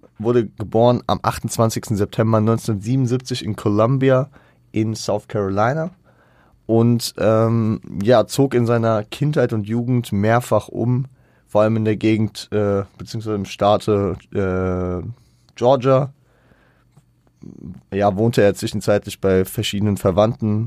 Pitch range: 100-120 Hz